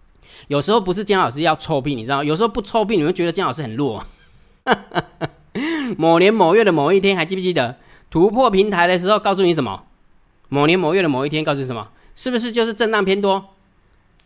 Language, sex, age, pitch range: Chinese, male, 20-39, 140-205 Hz